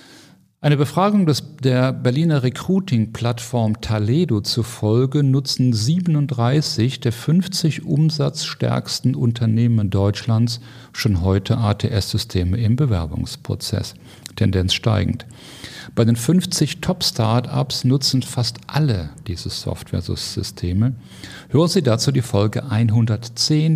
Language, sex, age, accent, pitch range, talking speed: German, male, 50-69, German, 110-145 Hz, 95 wpm